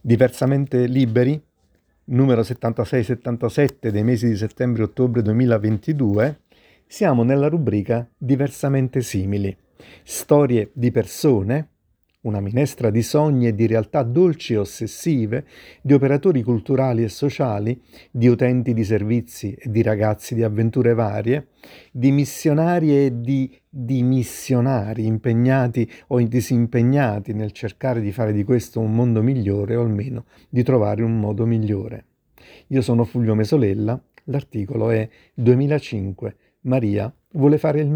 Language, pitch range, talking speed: Italian, 110-135 Hz, 125 wpm